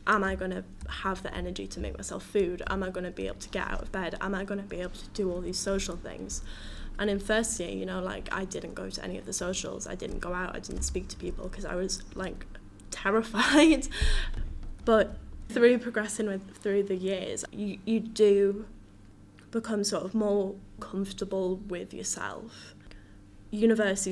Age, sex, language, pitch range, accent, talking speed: 10-29, female, English, 180-205 Hz, British, 200 wpm